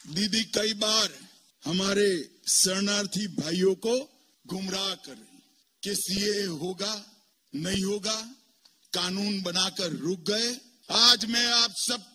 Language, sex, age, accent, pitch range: Bengali, male, 50-69, native, 140-230 Hz